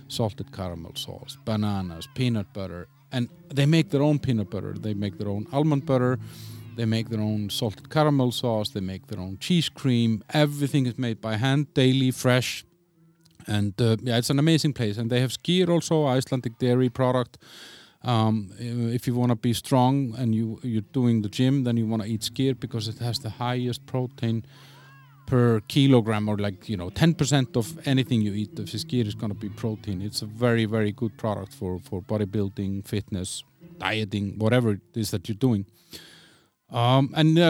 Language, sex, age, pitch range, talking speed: English, male, 40-59, 105-135 Hz, 190 wpm